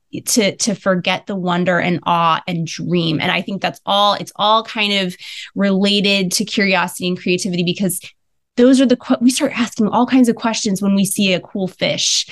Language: English